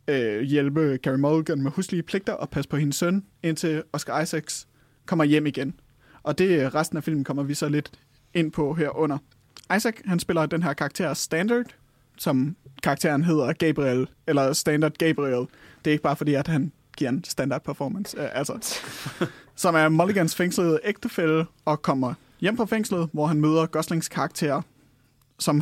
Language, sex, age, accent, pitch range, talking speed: Danish, male, 30-49, native, 140-165 Hz, 170 wpm